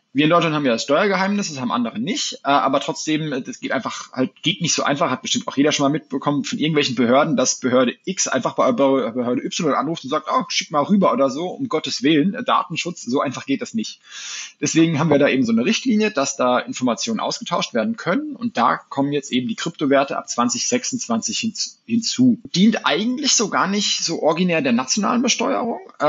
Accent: German